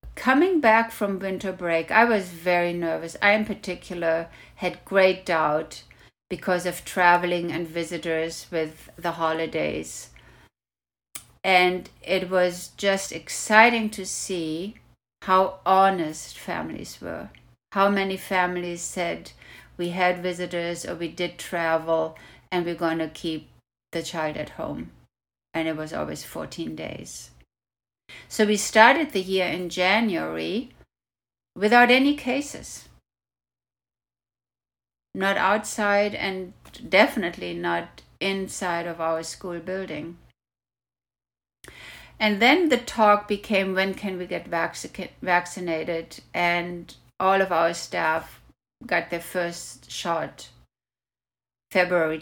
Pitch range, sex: 160-195 Hz, female